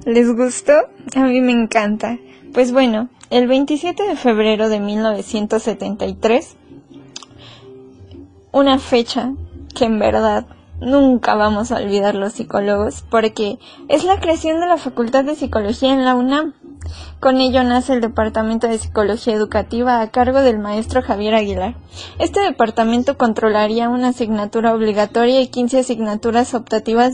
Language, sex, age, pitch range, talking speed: Spanish, female, 20-39, 215-255 Hz, 135 wpm